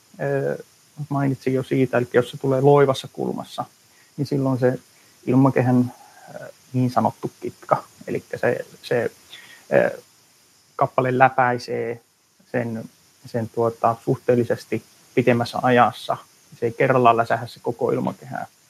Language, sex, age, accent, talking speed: Finnish, male, 30-49, native, 110 wpm